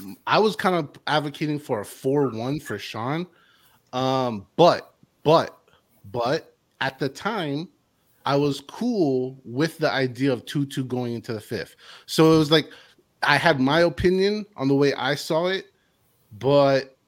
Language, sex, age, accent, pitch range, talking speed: English, male, 30-49, American, 130-180 Hz, 155 wpm